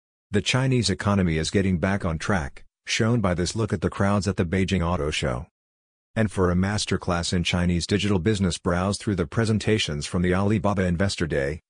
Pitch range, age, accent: 85-105 Hz, 50-69, American